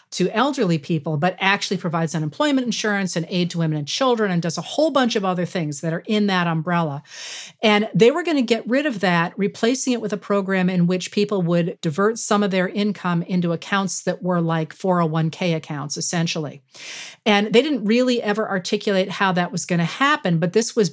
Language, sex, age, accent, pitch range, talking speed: English, female, 40-59, American, 170-220 Hz, 210 wpm